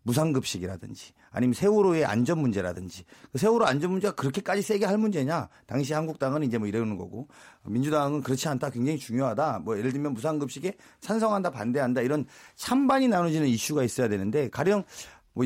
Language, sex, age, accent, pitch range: Korean, male, 40-59, native, 125-185 Hz